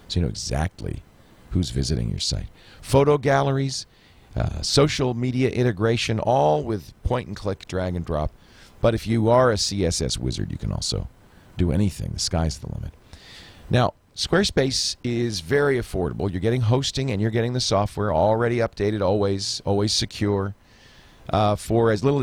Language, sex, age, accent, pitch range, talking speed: English, male, 40-59, American, 85-115 Hz, 150 wpm